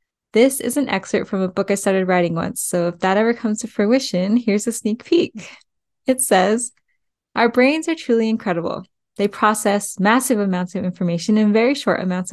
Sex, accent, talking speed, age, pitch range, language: female, American, 190 wpm, 10-29, 185-230 Hz, English